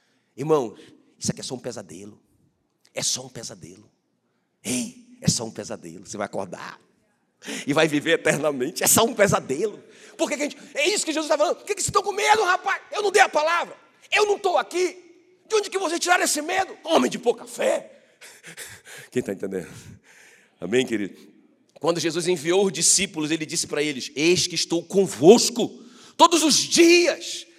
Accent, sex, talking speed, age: Brazilian, male, 180 wpm, 40-59